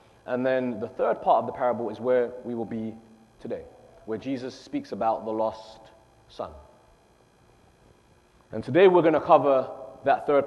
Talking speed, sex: 165 wpm, male